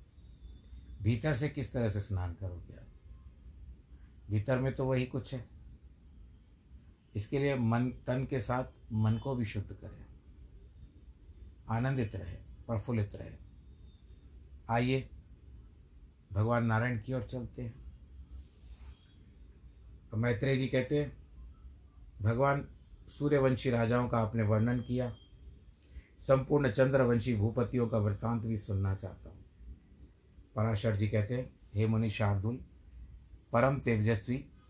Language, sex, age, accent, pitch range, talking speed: Hindi, male, 60-79, native, 75-120 Hz, 110 wpm